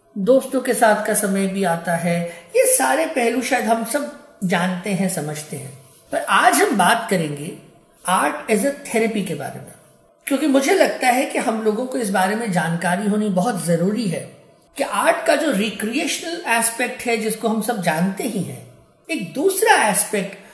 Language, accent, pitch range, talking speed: Hindi, native, 180-235 Hz, 180 wpm